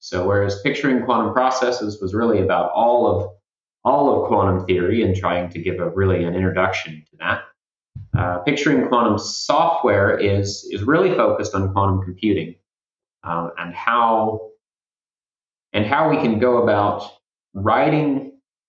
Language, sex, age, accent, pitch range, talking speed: English, male, 30-49, American, 90-110 Hz, 145 wpm